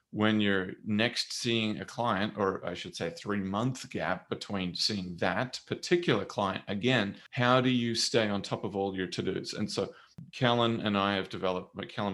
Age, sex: 30-49, male